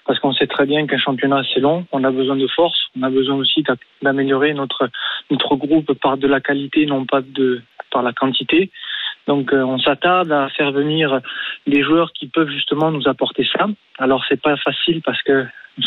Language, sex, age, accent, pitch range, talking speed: French, male, 20-39, French, 130-150 Hz, 200 wpm